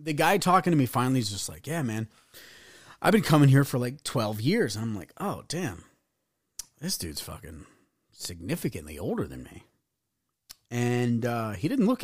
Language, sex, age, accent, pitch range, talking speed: English, male, 30-49, American, 115-155 Hz, 175 wpm